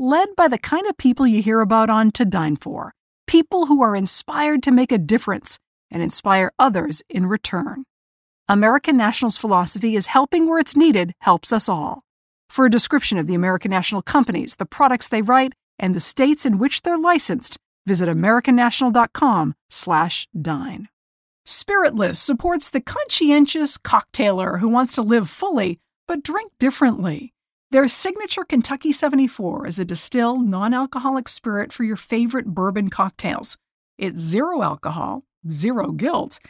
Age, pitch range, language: 50-69, 205-280 Hz, English